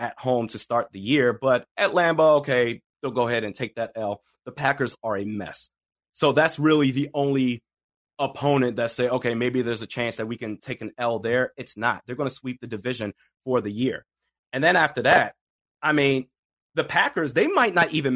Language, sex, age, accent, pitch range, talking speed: English, male, 30-49, American, 115-140 Hz, 215 wpm